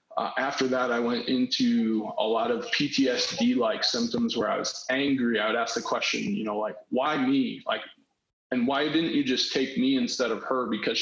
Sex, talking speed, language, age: male, 200 wpm, English, 20-39